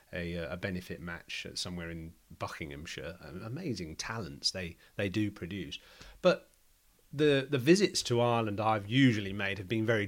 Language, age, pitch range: English, 30-49, 95-120 Hz